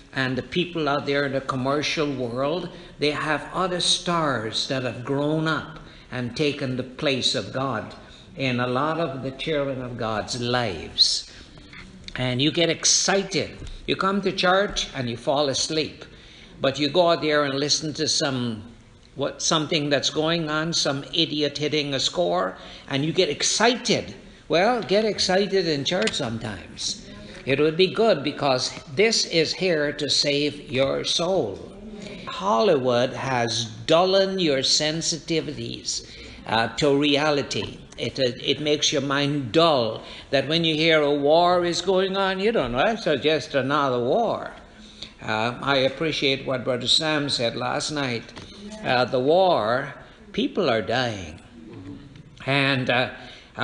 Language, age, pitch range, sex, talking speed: English, 60-79, 130-165 Hz, male, 150 wpm